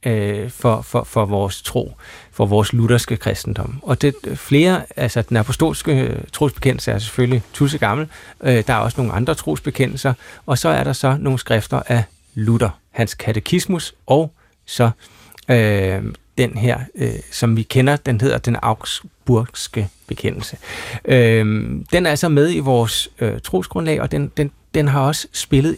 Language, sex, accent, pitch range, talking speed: Danish, male, native, 115-145 Hz, 135 wpm